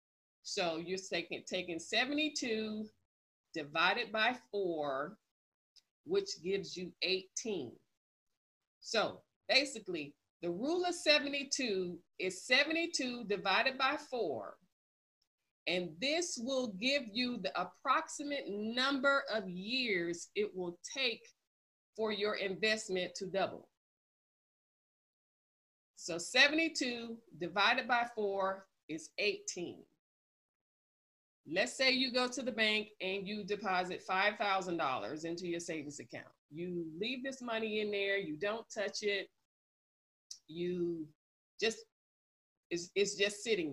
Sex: female